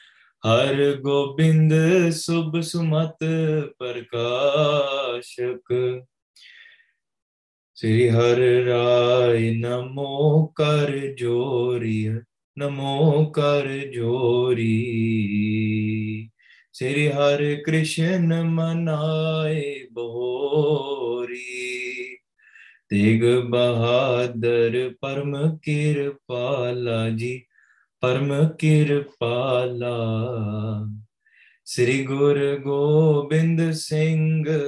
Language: English